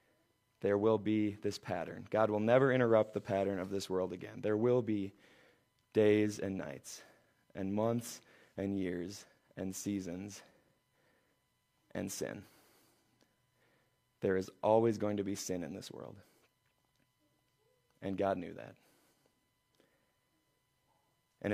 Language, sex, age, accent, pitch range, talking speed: English, male, 20-39, American, 100-125 Hz, 125 wpm